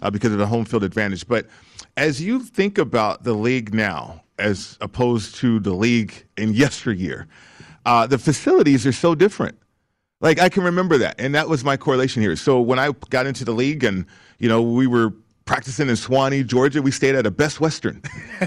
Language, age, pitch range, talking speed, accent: English, 40-59, 110-145 Hz, 200 wpm, American